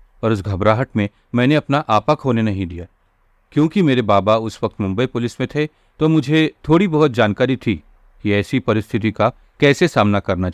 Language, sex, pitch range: Hindi, male, 100-140 Hz